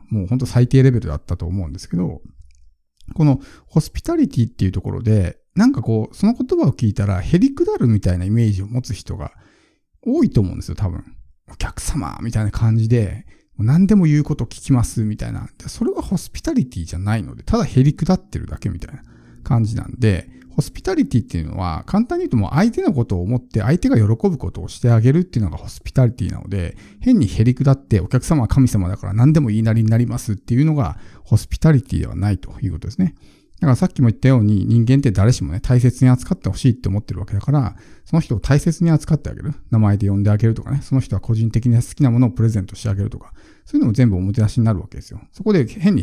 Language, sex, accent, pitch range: Japanese, male, native, 100-135 Hz